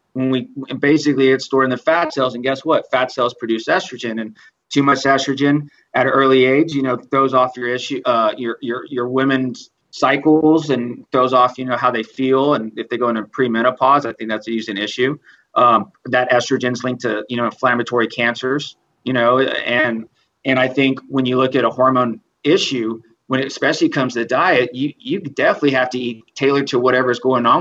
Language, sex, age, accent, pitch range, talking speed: English, male, 30-49, American, 125-145 Hz, 205 wpm